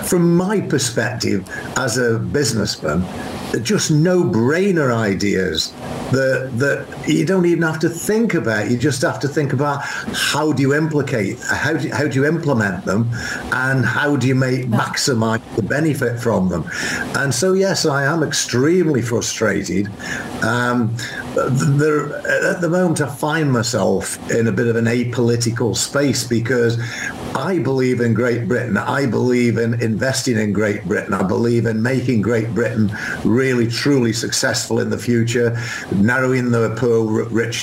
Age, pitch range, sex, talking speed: 50-69, 115-145 Hz, male, 155 wpm